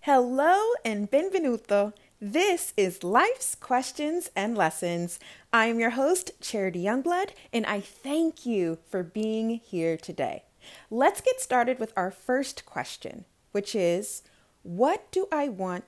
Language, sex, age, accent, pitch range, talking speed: English, female, 30-49, American, 180-265 Hz, 135 wpm